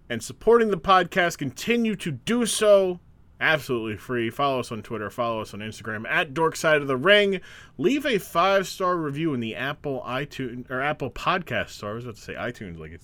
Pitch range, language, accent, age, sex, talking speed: 100-155 Hz, English, American, 30-49, male, 205 wpm